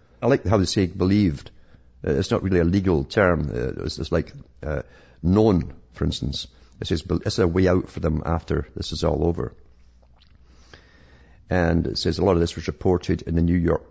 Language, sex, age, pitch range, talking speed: English, male, 50-69, 80-95 Hz, 205 wpm